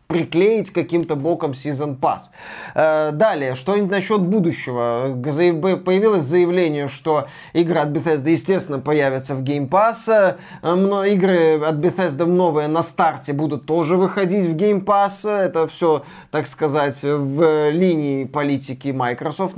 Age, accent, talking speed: 20-39, native, 125 wpm